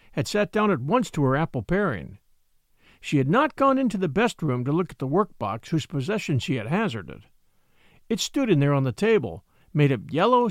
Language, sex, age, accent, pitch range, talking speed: English, male, 50-69, American, 135-210 Hz, 210 wpm